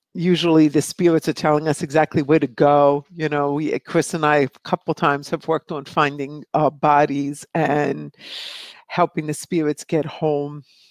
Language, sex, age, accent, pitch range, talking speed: English, female, 50-69, American, 150-190 Hz, 170 wpm